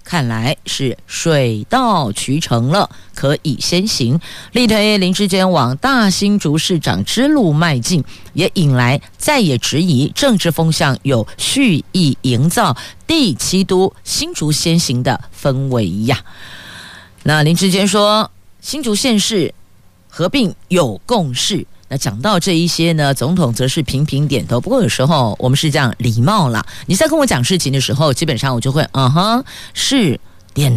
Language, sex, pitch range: Chinese, female, 130-190 Hz